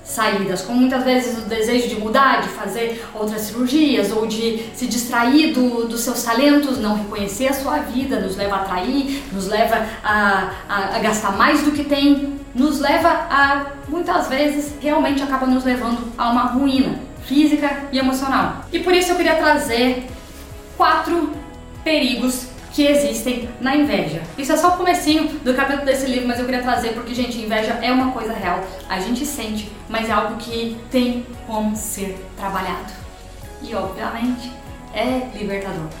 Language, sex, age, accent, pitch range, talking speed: Portuguese, female, 10-29, Brazilian, 220-280 Hz, 170 wpm